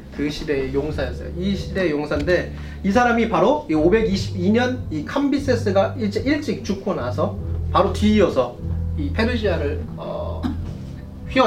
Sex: male